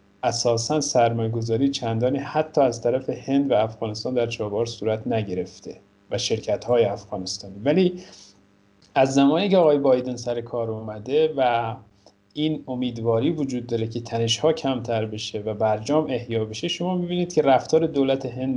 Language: Persian